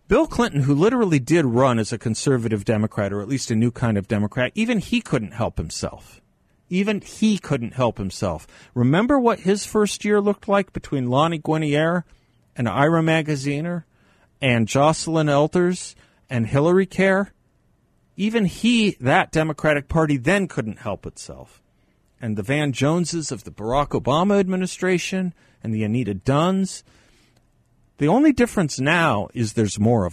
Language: English